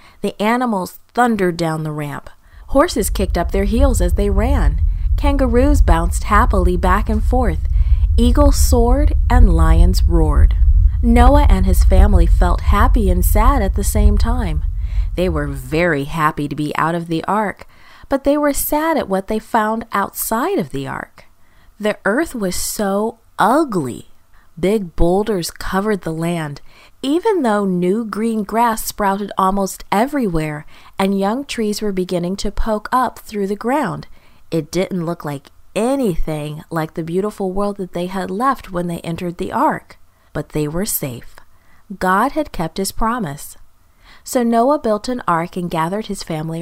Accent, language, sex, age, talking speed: American, English, female, 30-49, 160 wpm